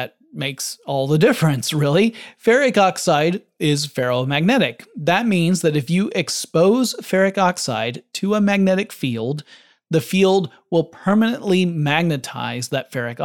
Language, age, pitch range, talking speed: English, 30-49, 140-185 Hz, 125 wpm